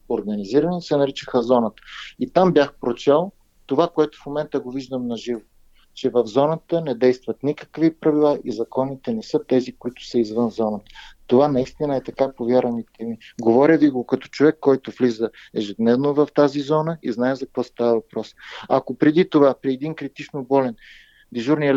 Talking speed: 170 wpm